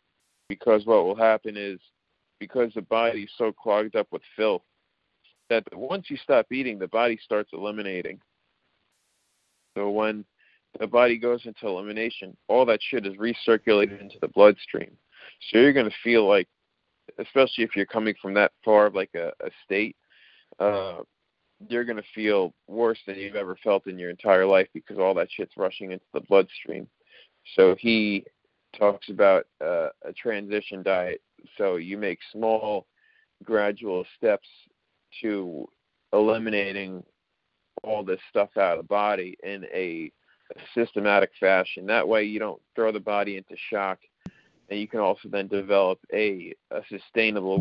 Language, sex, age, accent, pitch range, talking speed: English, male, 40-59, American, 100-120 Hz, 155 wpm